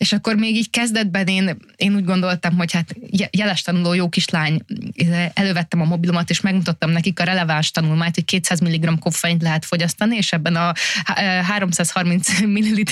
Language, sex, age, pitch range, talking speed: Hungarian, female, 20-39, 170-210 Hz, 165 wpm